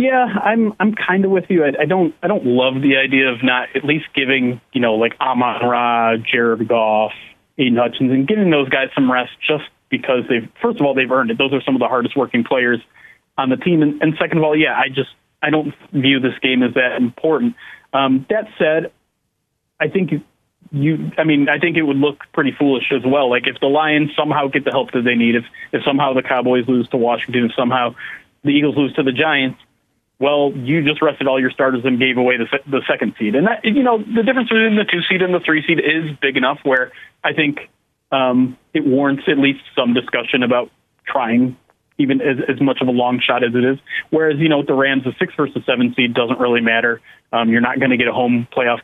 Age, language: 30-49, English